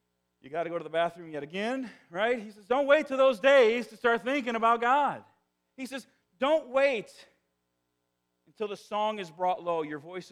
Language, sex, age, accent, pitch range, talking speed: English, male, 40-59, American, 160-240 Hz, 200 wpm